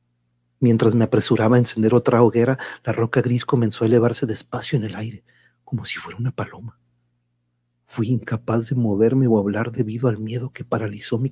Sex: male